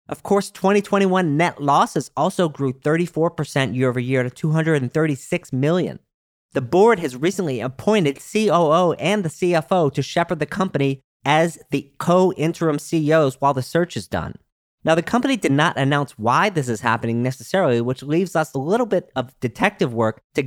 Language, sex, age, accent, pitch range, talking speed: English, male, 40-59, American, 135-175 Hz, 160 wpm